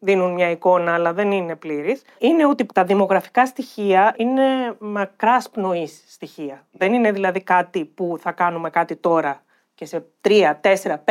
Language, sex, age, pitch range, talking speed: Greek, female, 30-49, 170-240 Hz, 155 wpm